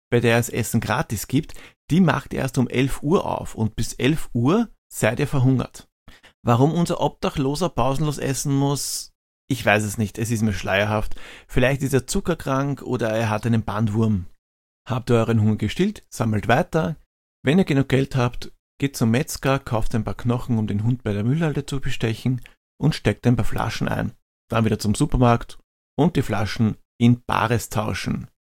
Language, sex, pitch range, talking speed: German, male, 105-130 Hz, 180 wpm